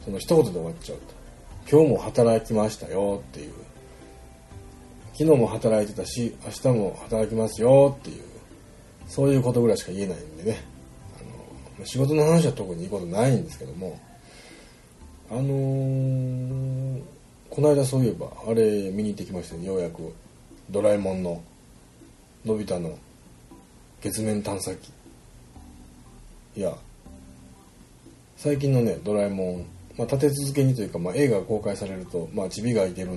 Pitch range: 80-130 Hz